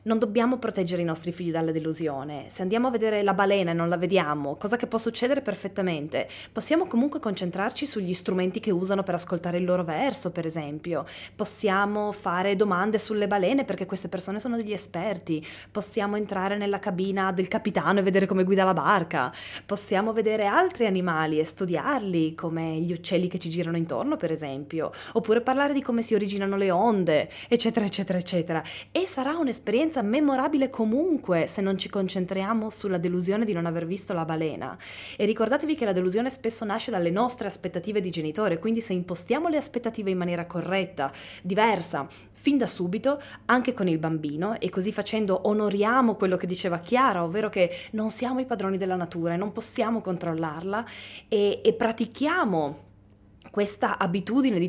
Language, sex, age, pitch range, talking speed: Italian, female, 20-39, 175-225 Hz, 170 wpm